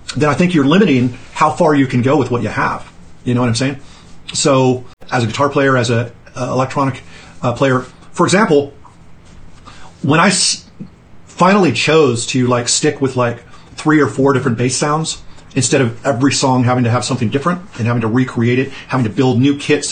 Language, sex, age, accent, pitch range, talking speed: English, male, 40-59, American, 120-145 Hz, 200 wpm